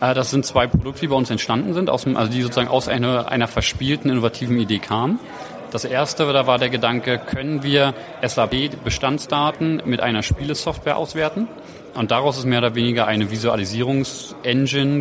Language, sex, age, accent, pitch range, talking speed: German, male, 30-49, German, 115-140 Hz, 160 wpm